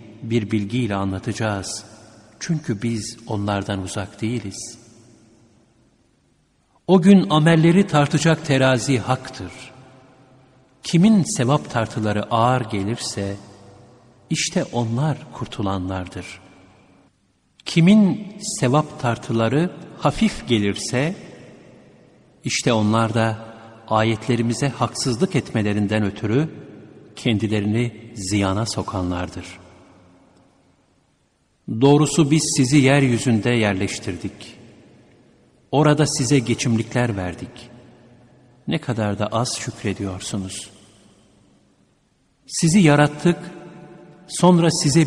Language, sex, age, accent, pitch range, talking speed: Turkish, male, 60-79, native, 100-140 Hz, 75 wpm